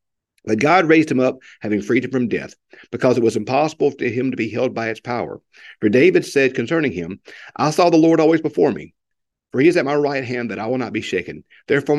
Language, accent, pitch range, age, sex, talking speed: English, American, 120-150 Hz, 50-69, male, 240 wpm